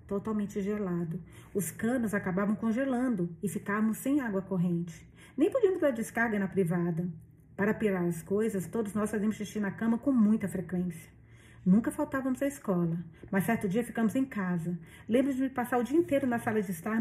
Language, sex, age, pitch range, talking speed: Portuguese, female, 40-59, 190-230 Hz, 180 wpm